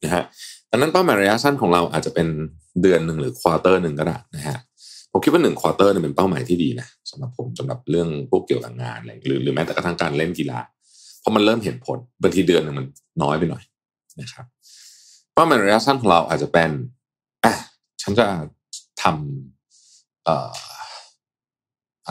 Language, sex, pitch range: Thai, male, 85-130 Hz